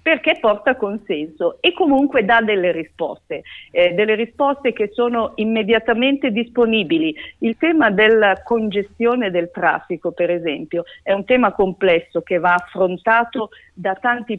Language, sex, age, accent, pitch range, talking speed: Italian, female, 50-69, native, 185-265 Hz, 135 wpm